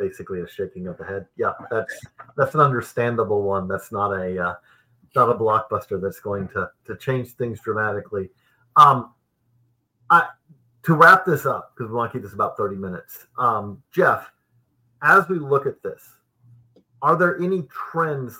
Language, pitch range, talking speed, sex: English, 120-170 Hz, 170 wpm, male